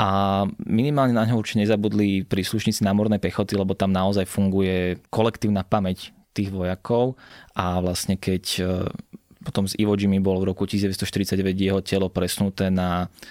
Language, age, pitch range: Slovak, 20-39, 90-100 Hz